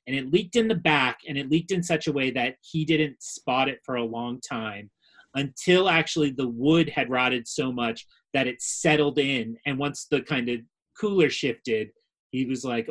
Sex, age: male, 30-49